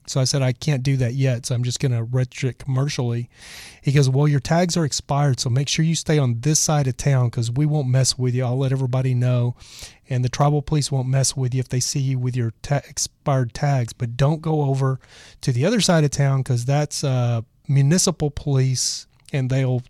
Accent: American